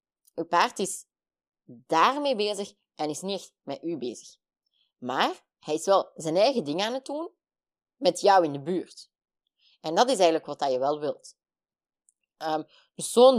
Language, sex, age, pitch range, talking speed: Dutch, female, 20-39, 145-195 Hz, 160 wpm